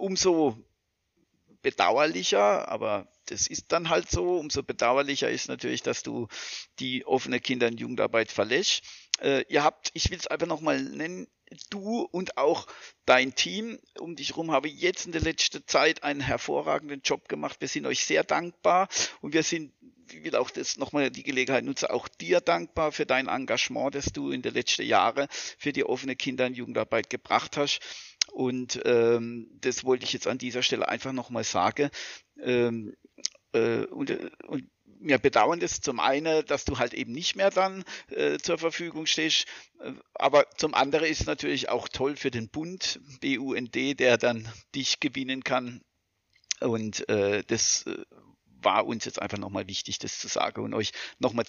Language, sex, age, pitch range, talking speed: German, male, 50-69, 115-155 Hz, 170 wpm